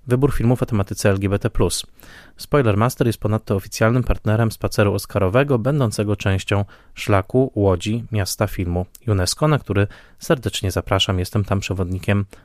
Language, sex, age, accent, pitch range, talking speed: Polish, male, 20-39, native, 100-120 Hz, 130 wpm